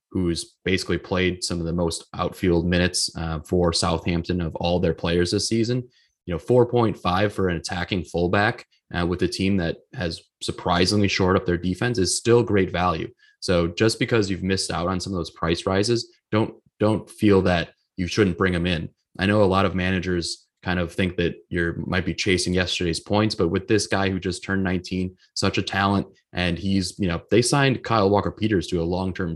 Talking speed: 200 wpm